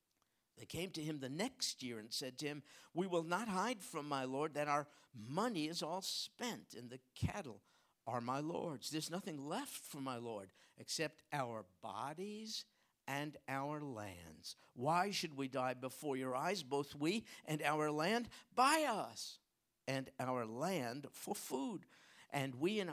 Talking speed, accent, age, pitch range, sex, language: 170 wpm, American, 50-69, 135-225 Hz, male, English